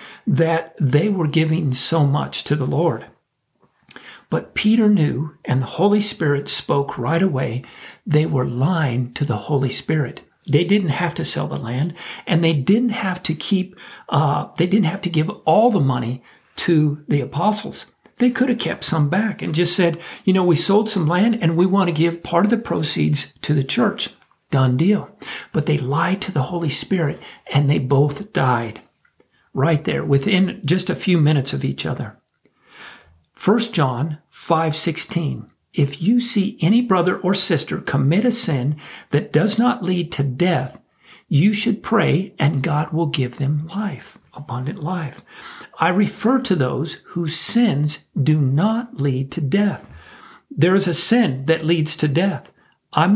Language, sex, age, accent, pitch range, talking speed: English, male, 50-69, American, 145-190 Hz, 170 wpm